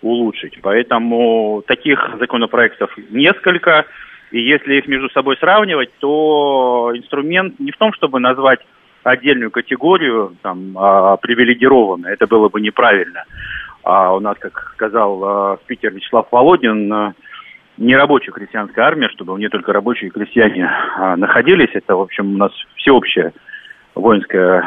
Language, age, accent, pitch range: Russian, 40-59, native, 110-150 Hz